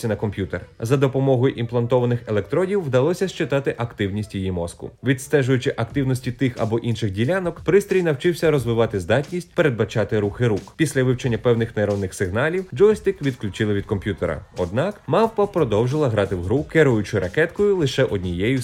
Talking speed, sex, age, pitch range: 140 wpm, male, 30-49, 100-155 Hz